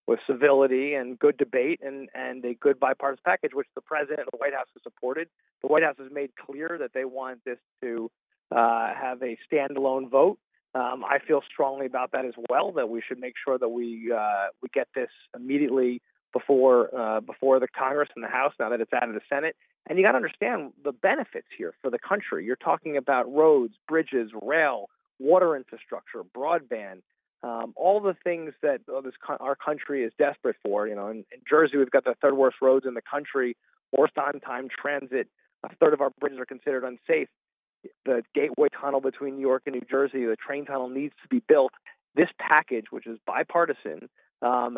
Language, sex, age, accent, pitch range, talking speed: English, male, 40-59, American, 125-150 Hz, 200 wpm